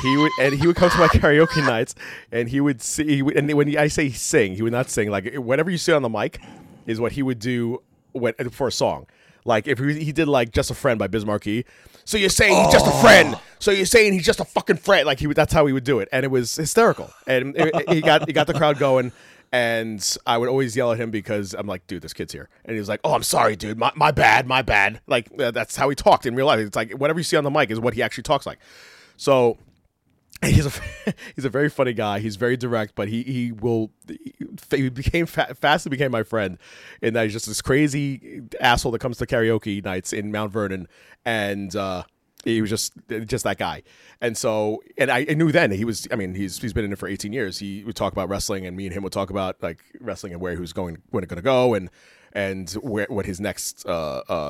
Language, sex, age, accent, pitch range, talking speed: English, male, 30-49, American, 100-145 Hz, 250 wpm